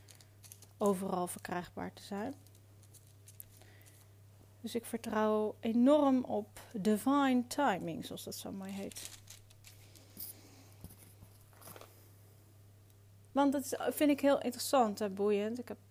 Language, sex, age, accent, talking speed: Dutch, female, 30-49, Dutch, 100 wpm